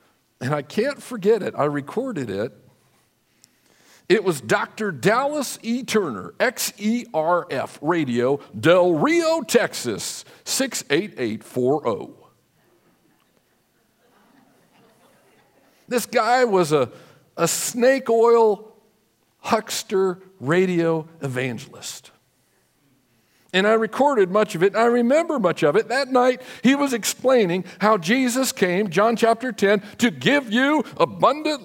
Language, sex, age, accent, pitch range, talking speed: English, male, 50-69, American, 185-265 Hz, 110 wpm